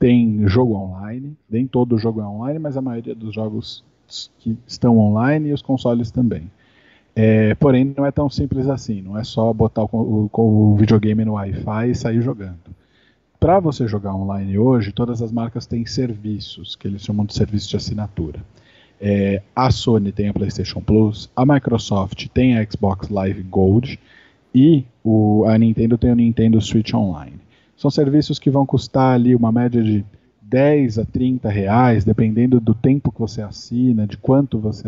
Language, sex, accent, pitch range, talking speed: Portuguese, male, Brazilian, 105-130 Hz, 175 wpm